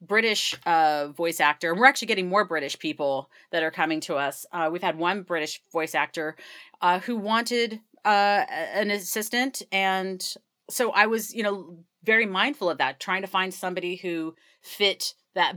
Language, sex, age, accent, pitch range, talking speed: English, female, 40-59, American, 155-190 Hz, 175 wpm